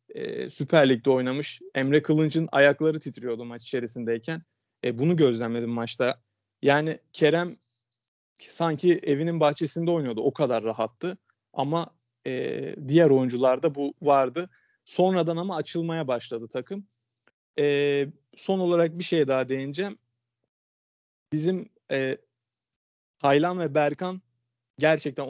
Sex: male